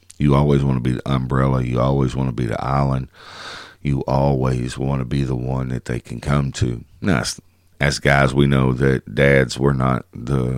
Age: 50-69